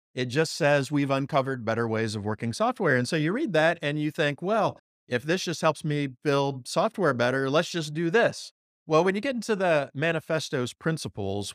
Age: 40-59